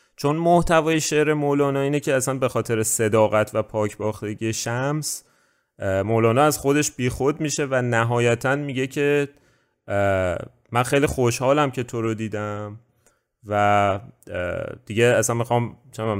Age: 30-49